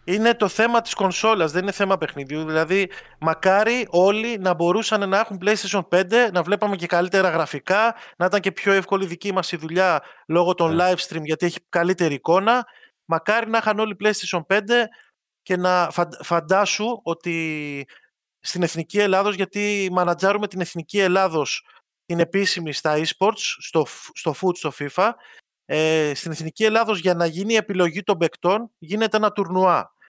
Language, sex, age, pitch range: Greek, male, 20-39, 170-210 Hz